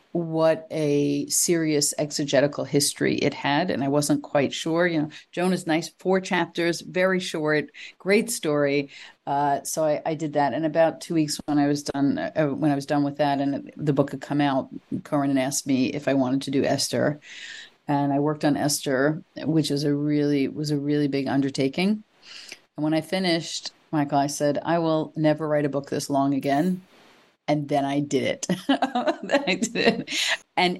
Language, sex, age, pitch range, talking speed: English, female, 40-59, 145-165 Hz, 190 wpm